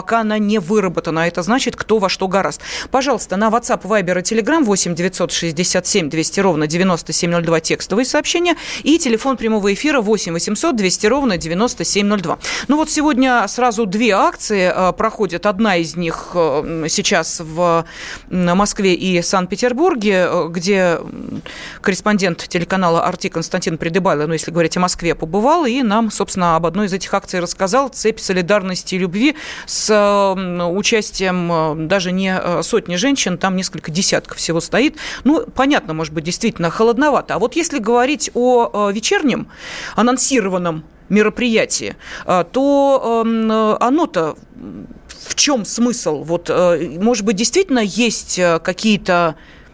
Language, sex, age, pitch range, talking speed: Russian, female, 30-49, 175-235 Hz, 130 wpm